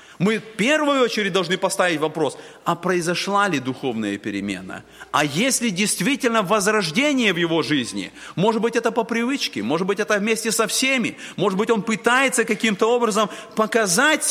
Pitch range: 160-235 Hz